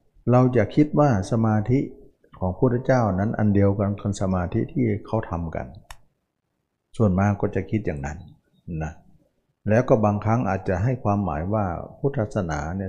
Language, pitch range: Thai, 90-115 Hz